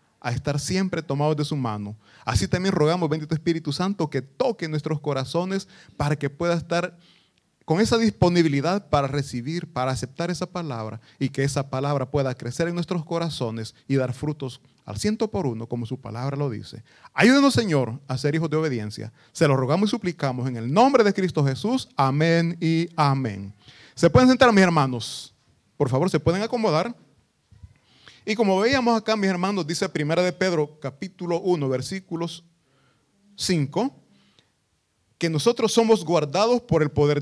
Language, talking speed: Italian, 165 wpm